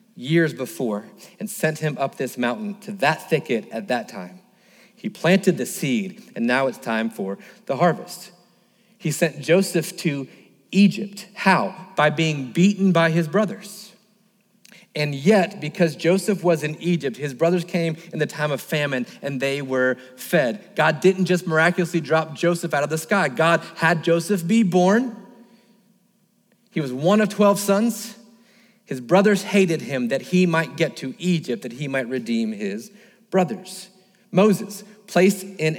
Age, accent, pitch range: 30-49, American, 155-210 Hz